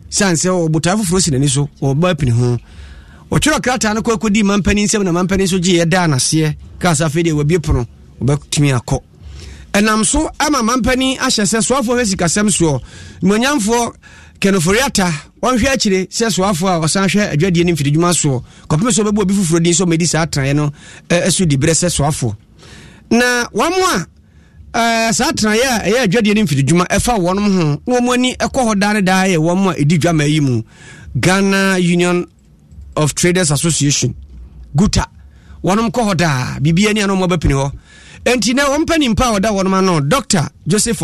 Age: 30-49